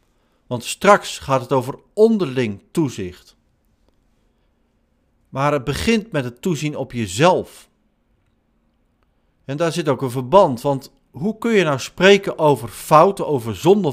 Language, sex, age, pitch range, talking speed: Dutch, male, 50-69, 125-175 Hz, 135 wpm